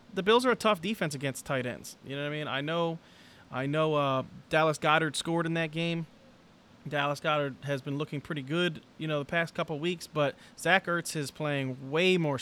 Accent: American